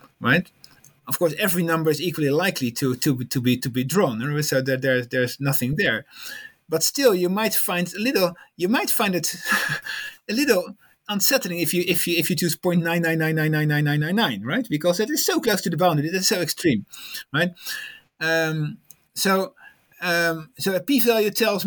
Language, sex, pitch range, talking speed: English, male, 140-200 Hz, 185 wpm